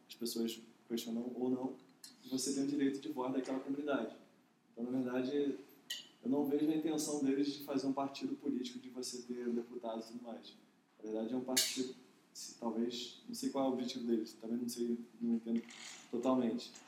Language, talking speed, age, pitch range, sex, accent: Portuguese, 195 wpm, 20-39, 120-140 Hz, male, Brazilian